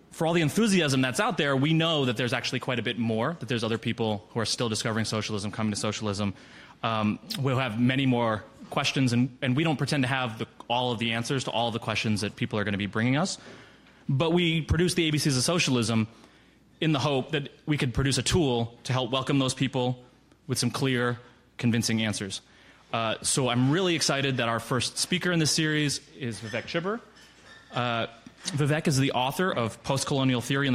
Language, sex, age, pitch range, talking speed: English, male, 20-39, 115-145 Hz, 215 wpm